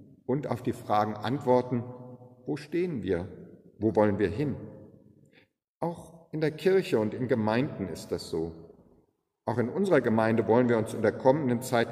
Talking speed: 165 wpm